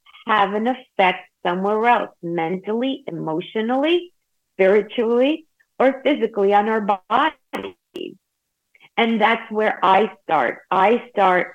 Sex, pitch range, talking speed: female, 190-280 Hz, 105 wpm